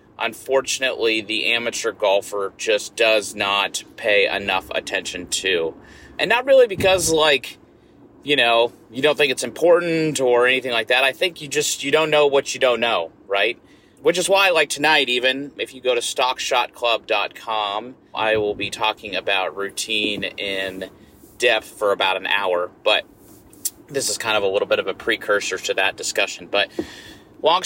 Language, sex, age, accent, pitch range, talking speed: English, male, 30-49, American, 115-165 Hz, 170 wpm